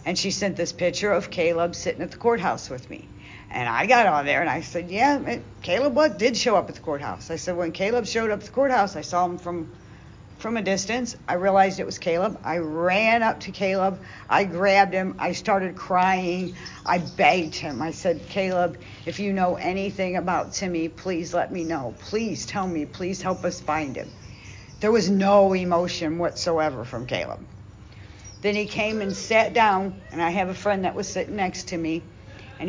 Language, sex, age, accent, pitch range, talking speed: English, female, 60-79, American, 155-205 Hz, 200 wpm